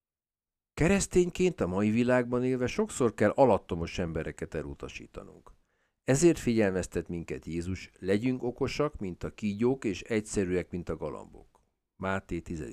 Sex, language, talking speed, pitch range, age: male, Hungarian, 125 wpm, 85-125 Hz, 50-69